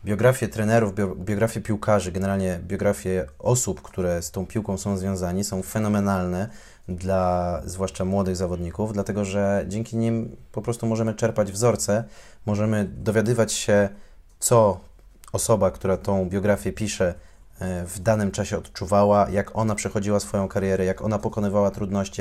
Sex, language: male, Polish